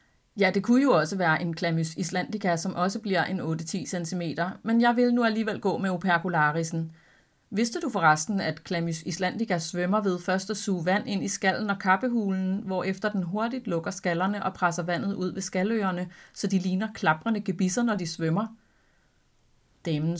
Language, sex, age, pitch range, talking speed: Danish, female, 30-49, 170-200 Hz, 180 wpm